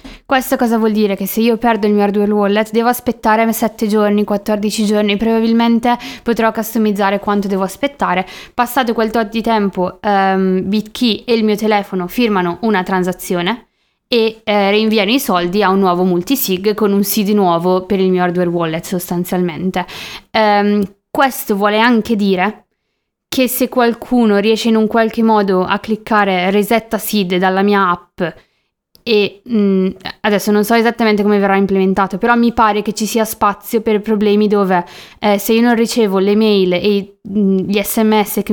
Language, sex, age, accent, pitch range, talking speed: Italian, female, 20-39, native, 190-225 Hz, 165 wpm